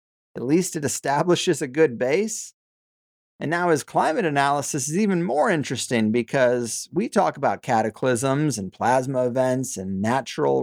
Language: English